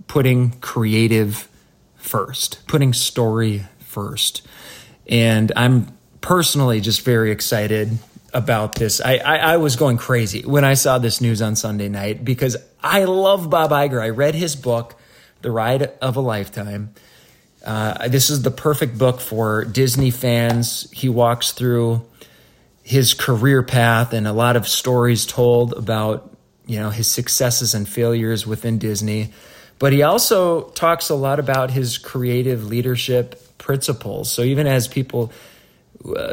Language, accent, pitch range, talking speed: English, American, 110-130 Hz, 145 wpm